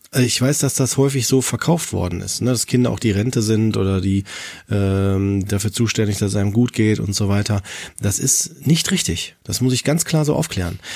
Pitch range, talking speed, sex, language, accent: 105-135 Hz, 215 wpm, male, German, German